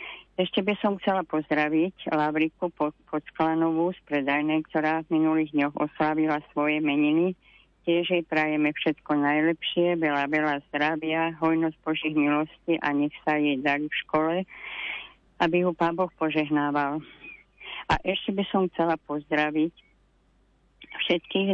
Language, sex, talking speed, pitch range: Slovak, female, 130 wpm, 150-170 Hz